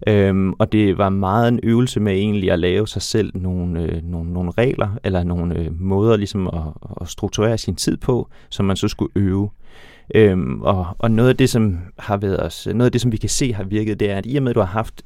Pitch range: 95-115 Hz